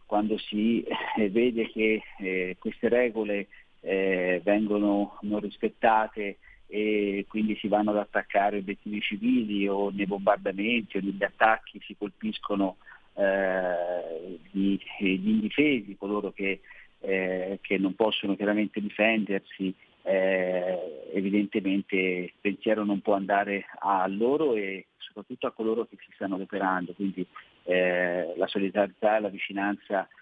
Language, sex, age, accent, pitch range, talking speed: Italian, male, 40-59, native, 95-105 Hz, 125 wpm